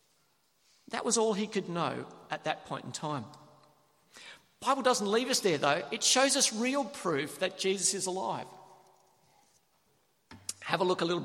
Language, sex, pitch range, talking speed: English, male, 165-240 Hz, 170 wpm